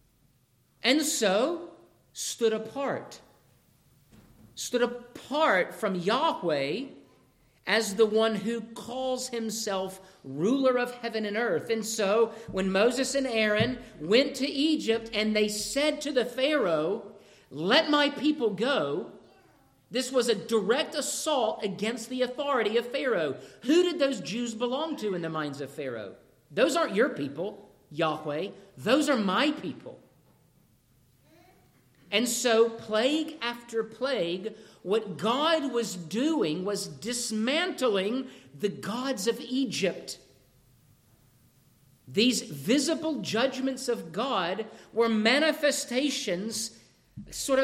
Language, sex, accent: English, male, American